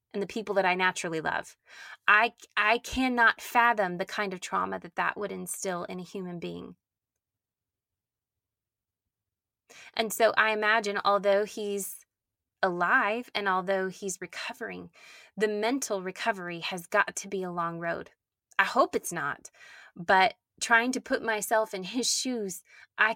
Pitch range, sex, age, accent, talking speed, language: 175-210 Hz, female, 20-39, American, 150 wpm, English